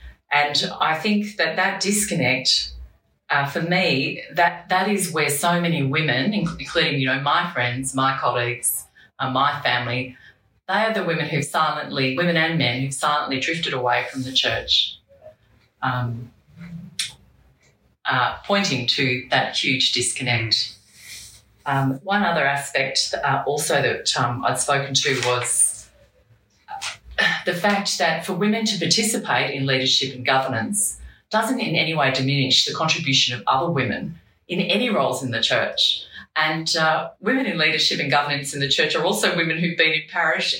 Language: English